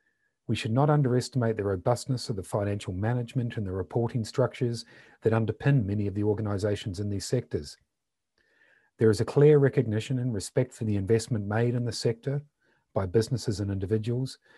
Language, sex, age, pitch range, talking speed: English, male, 40-59, 105-130 Hz, 170 wpm